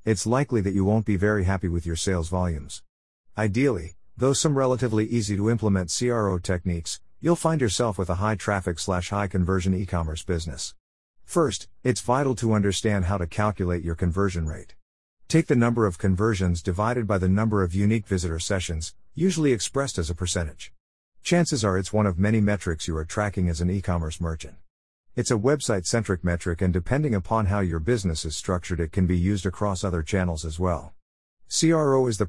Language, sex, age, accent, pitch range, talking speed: English, male, 50-69, American, 85-110 Hz, 175 wpm